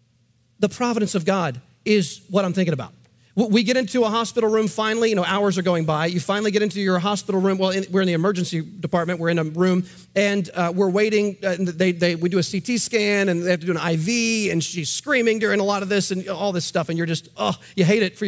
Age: 40-59